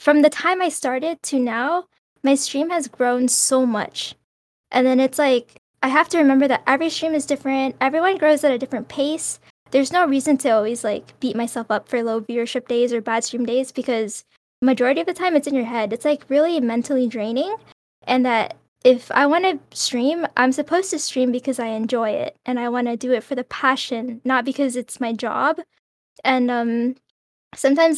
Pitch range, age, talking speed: 235-295 Hz, 10-29, 200 wpm